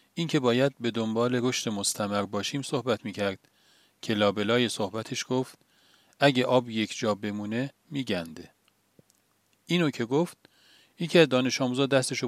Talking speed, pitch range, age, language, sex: 135 wpm, 105-135 Hz, 40-59, Persian, male